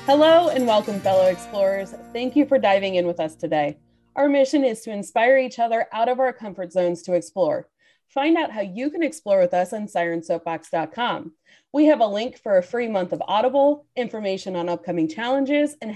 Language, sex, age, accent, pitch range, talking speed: English, female, 30-49, American, 190-275 Hz, 195 wpm